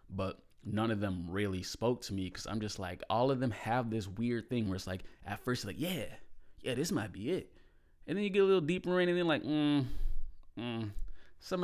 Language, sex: English, male